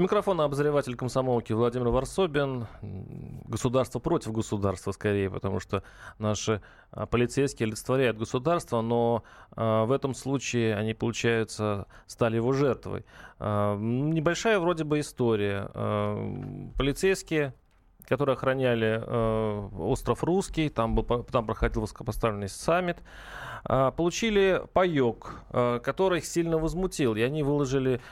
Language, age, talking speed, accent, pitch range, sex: Russian, 30-49, 110 wpm, native, 115-155 Hz, male